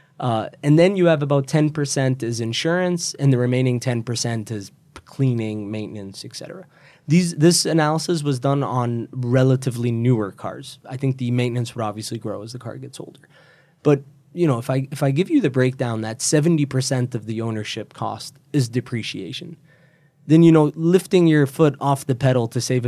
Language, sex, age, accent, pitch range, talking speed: English, male, 20-39, American, 115-145 Hz, 185 wpm